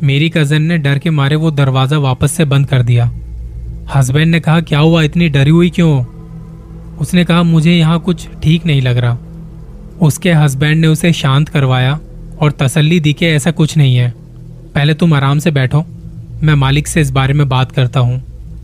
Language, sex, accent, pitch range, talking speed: Hindi, male, native, 140-165 Hz, 190 wpm